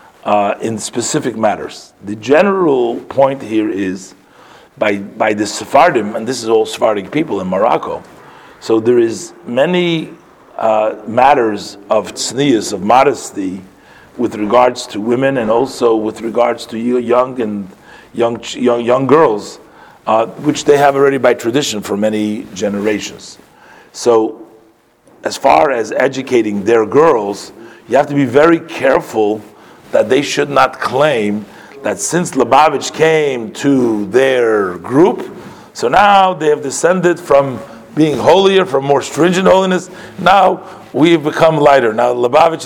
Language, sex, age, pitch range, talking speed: English, male, 40-59, 110-155 Hz, 140 wpm